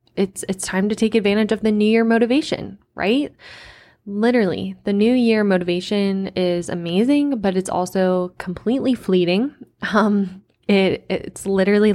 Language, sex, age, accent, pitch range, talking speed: English, female, 10-29, American, 180-210 Hz, 140 wpm